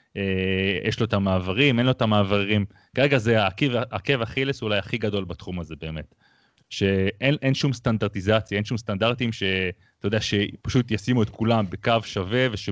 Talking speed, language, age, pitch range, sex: 155 wpm, Hebrew, 30-49, 100-125 Hz, male